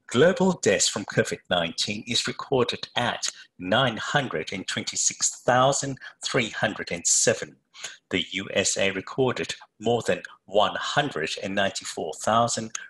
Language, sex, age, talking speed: English, male, 50-69, 65 wpm